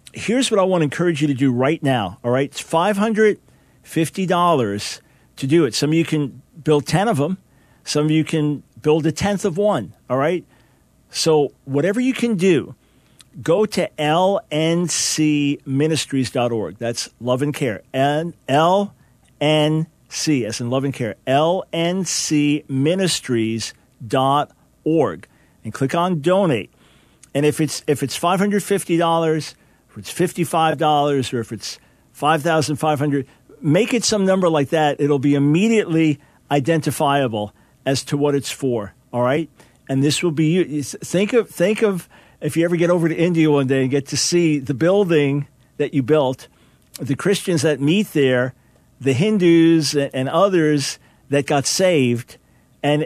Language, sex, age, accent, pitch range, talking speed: English, male, 50-69, American, 135-170 Hz, 145 wpm